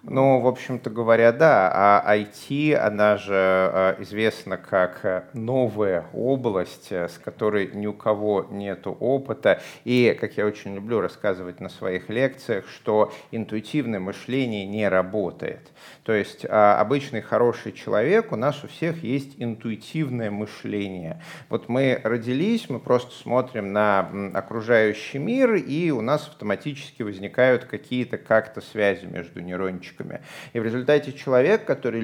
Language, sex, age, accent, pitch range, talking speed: Russian, male, 30-49, native, 105-135 Hz, 130 wpm